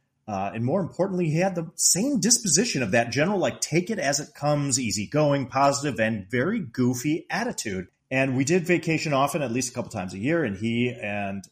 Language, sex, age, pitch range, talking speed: English, male, 30-49, 105-140 Hz, 205 wpm